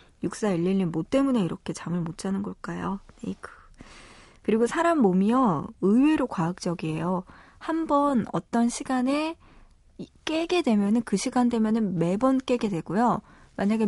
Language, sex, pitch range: Korean, female, 185-240 Hz